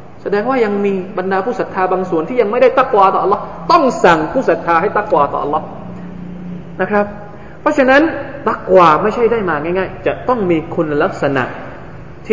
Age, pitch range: 20-39, 135-200 Hz